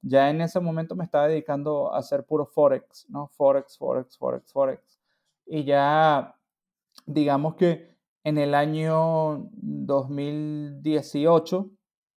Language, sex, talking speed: Spanish, male, 120 wpm